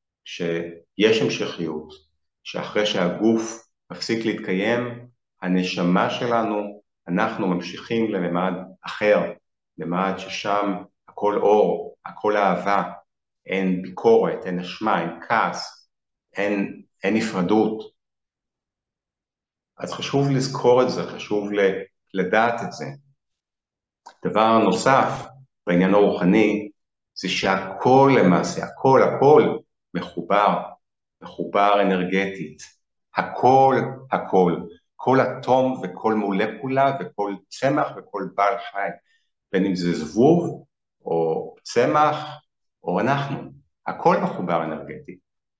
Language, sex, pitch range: Hebrew, male, 95-125 Hz